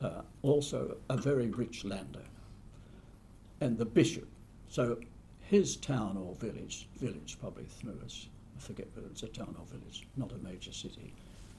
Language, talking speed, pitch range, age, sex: English, 145 wpm, 100-130 Hz, 60-79, male